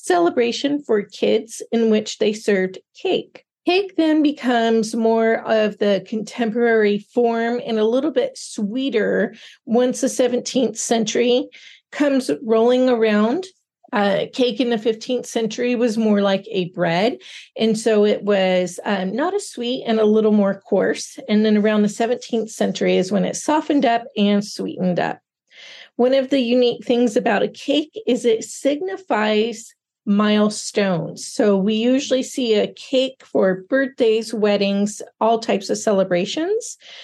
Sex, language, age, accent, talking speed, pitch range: female, English, 40-59, American, 145 wpm, 210-260 Hz